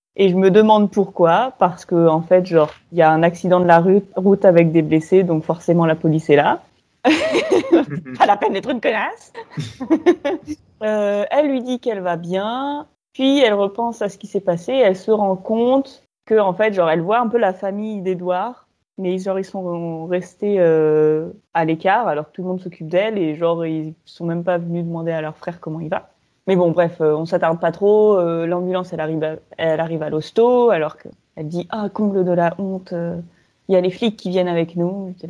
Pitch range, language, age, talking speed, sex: 165-205 Hz, French, 20-39, 220 wpm, female